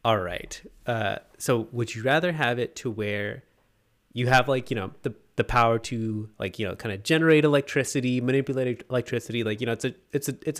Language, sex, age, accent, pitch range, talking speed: English, male, 20-39, American, 110-135 Hz, 185 wpm